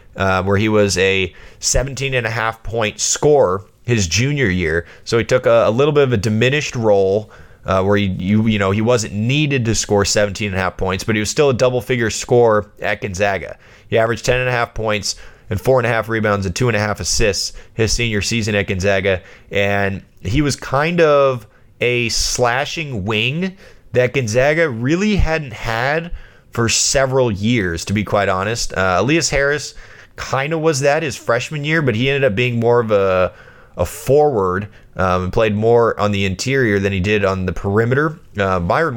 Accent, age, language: American, 20-39, English